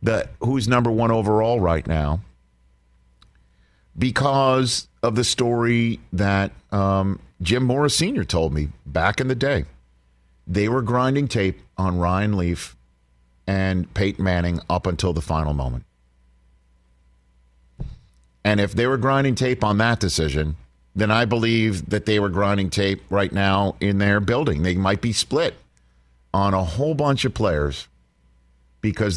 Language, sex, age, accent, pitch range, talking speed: English, male, 50-69, American, 65-100 Hz, 140 wpm